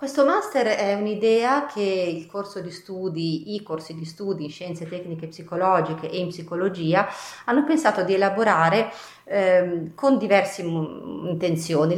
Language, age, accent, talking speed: Italian, 30-49, native, 140 wpm